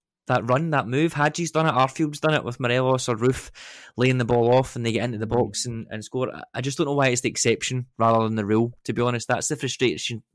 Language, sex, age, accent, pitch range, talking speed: English, male, 20-39, British, 110-130 Hz, 260 wpm